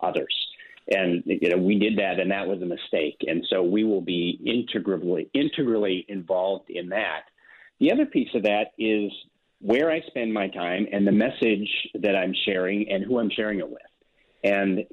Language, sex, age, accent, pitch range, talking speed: English, male, 40-59, American, 95-115 Hz, 185 wpm